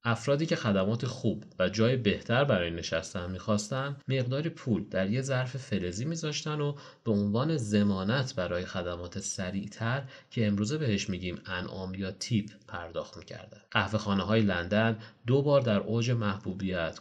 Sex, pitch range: male, 100-125 Hz